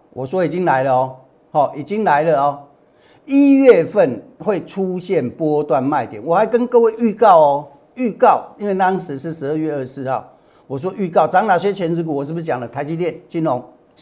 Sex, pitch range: male, 145-230 Hz